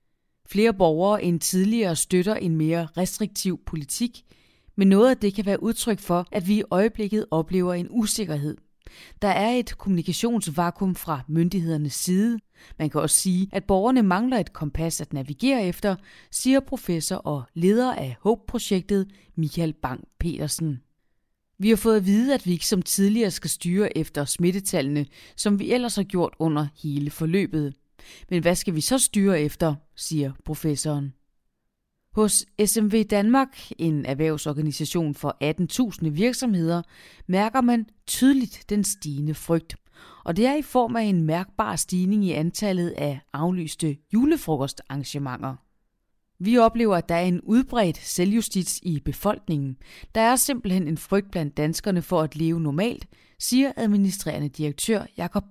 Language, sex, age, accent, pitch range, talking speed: Danish, female, 30-49, native, 155-210 Hz, 145 wpm